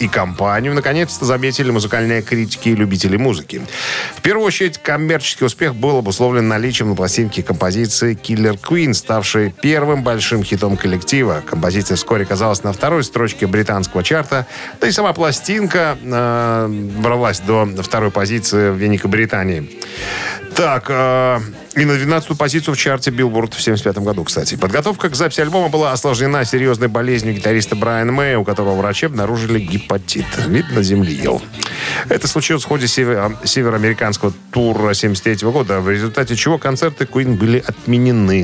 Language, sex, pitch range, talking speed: Russian, male, 105-135 Hz, 145 wpm